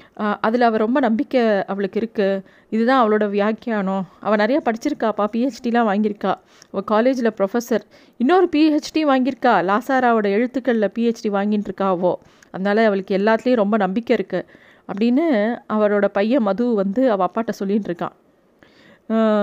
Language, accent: Tamil, native